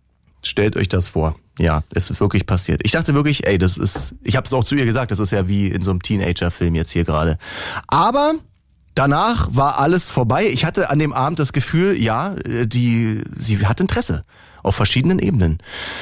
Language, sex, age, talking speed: German, male, 30-49, 200 wpm